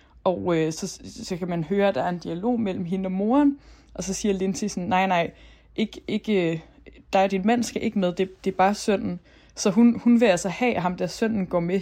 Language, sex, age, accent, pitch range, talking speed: Danish, female, 20-39, native, 170-200 Hz, 245 wpm